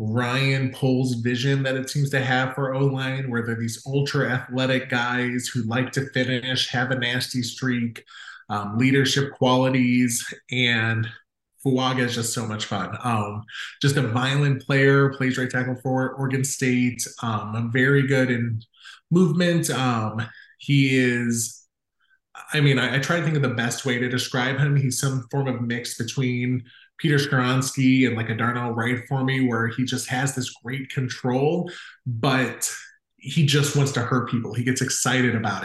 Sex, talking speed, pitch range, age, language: male, 165 wpm, 120-135 Hz, 20-39, English